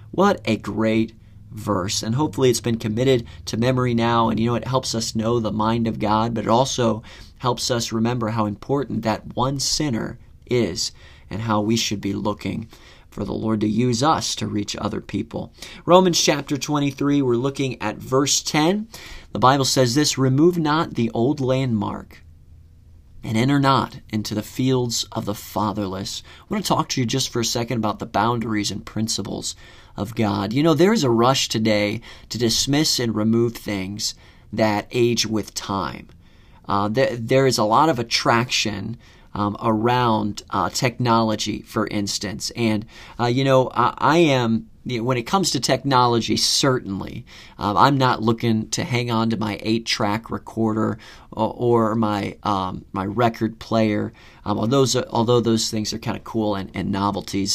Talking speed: 180 wpm